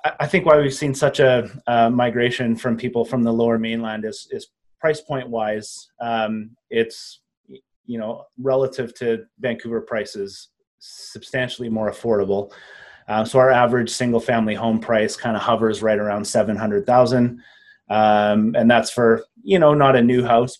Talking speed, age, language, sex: 165 wpm, 30-49, English, male